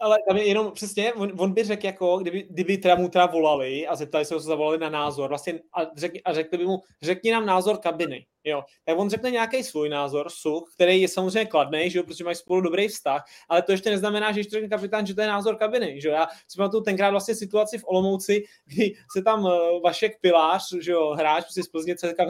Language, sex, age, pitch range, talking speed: Czech, male, 20-39, 175-210 Hz, 220 wpm